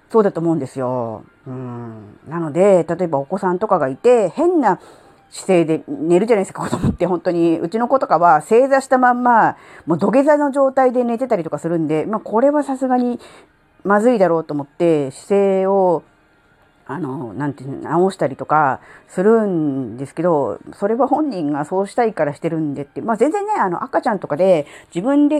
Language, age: Japanese, 40-59